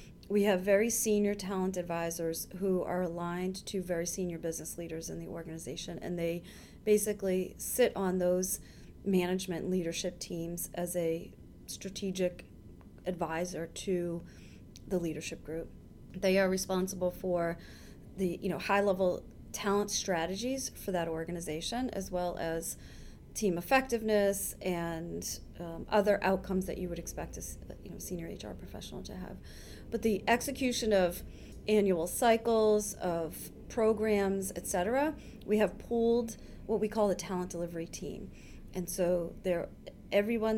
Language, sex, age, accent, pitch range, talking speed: English, female, 30-49, American, 170-200 Hz, 135 wpm